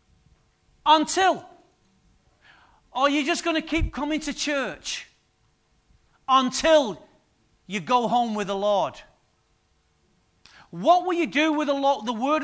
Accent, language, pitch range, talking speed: British, English, 240-320 Hz, 130 wpm